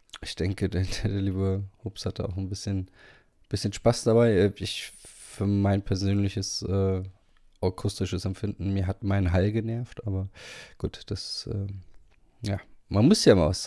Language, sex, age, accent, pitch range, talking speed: German, male, 20-39, German, 95-105 Hz, 155 wpm